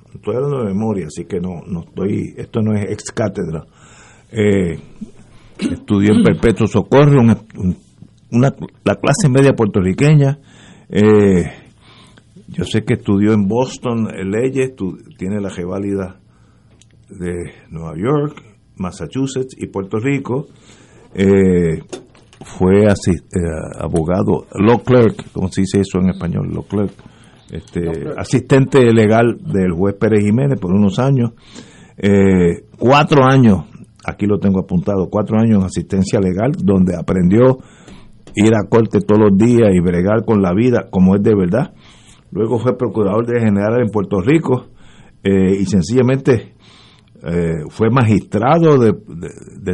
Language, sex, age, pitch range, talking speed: Spanish, male, 50-69, 95-120 Hz, 140 wpm